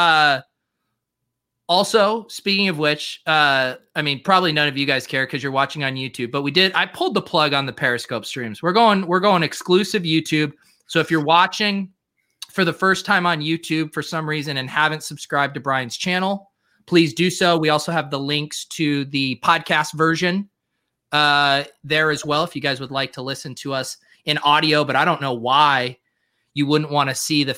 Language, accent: English, American